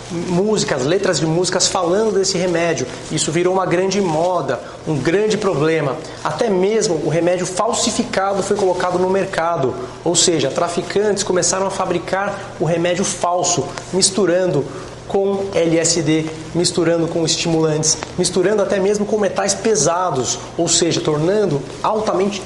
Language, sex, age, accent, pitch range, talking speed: Portuguese, male, 30-49, Brazilian, 160-200 Hz, 130 wpm